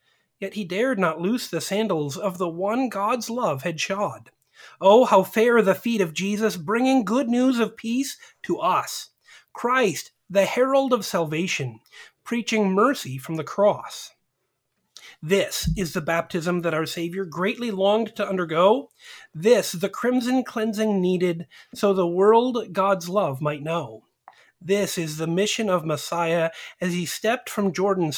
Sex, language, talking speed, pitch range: male, English, 155 wpm, 170-225 Hz